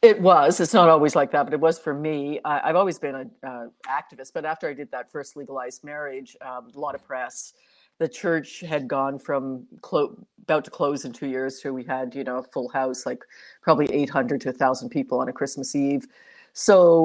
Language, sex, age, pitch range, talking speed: English, female, 50-69, 135-165 Hz, 220 wpm